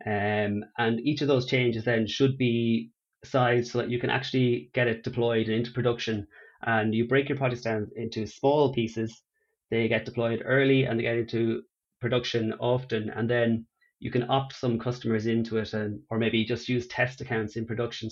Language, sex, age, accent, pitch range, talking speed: English, male, 30-49, Irish, 115-130 Hz, 190 wpm